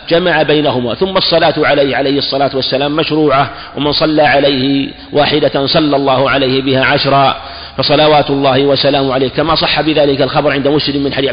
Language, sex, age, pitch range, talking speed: Arabic, male, 50-69, 135-155 Hz, 160 wpm